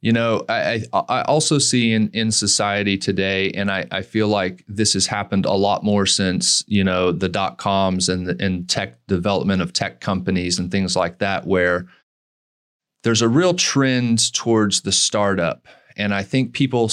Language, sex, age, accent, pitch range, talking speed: English, male, 30-49, American, 100-130 Hz, 180 wpm